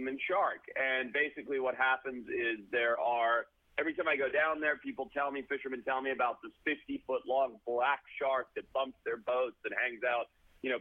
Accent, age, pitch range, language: American, 40-59, 120-150 Hz, English